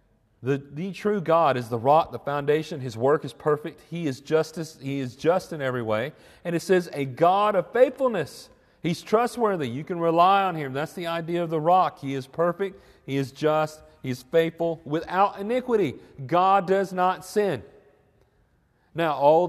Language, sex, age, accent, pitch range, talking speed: English, male, 40-59, American, 135-185 Hz, 175 wpm